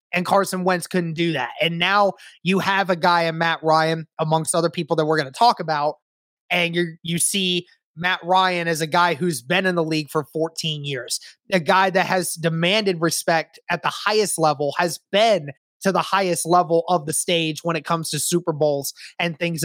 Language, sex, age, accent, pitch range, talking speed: English, male, 20-39, American, 165-185 Hz, 205 wpm